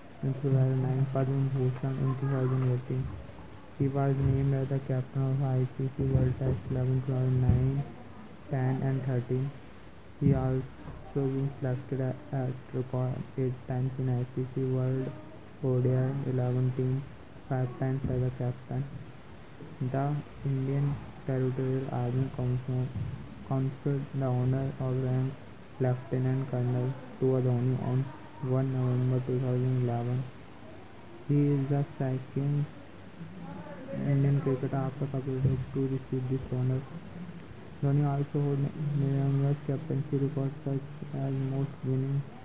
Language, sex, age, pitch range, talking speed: English, male, 20-39, 130-135 Hz, 110 wpm